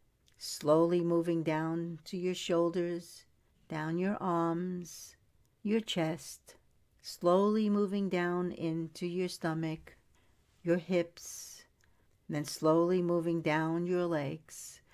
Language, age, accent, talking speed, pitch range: English, 60-79, American, 100 wpm, 155-190 Hz